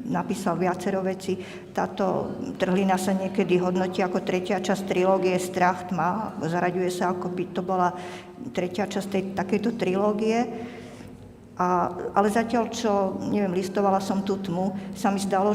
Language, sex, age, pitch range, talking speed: Slovak, female, 50-69, 185-215 Hz, 145 wpm